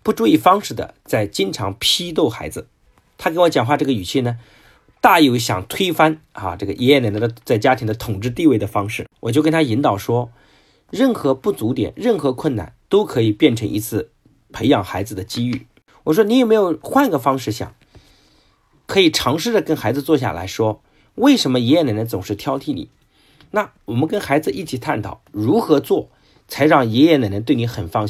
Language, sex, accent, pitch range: Chinese, male, native, 105-150 Hz